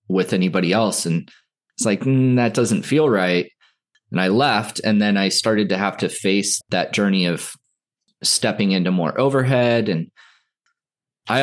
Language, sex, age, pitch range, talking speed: English, male, 20-39, 95-120 Hz, 165 wpm